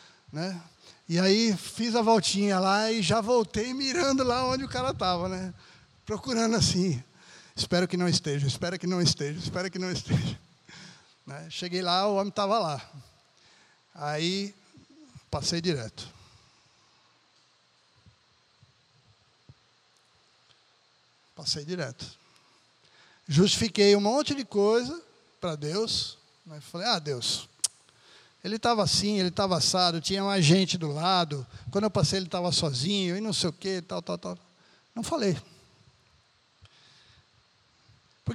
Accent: Brazilian